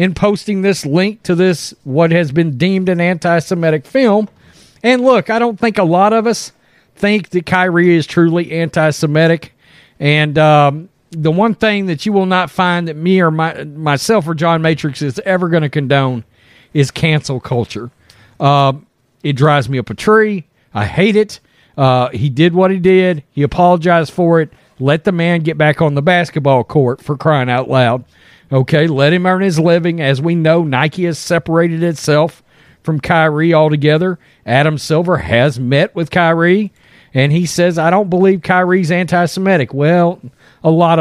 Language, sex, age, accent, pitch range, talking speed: English, male, 40-59, American, 145-190 Hz, 175 wpm